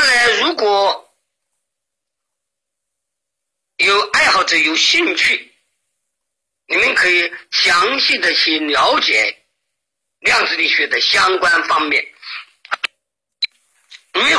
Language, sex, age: Chinese, male, 50-69